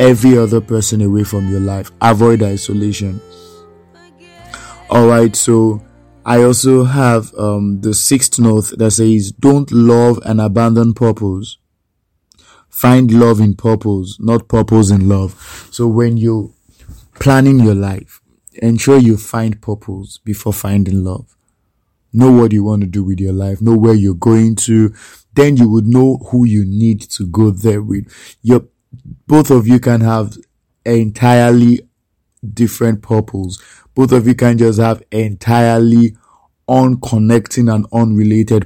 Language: English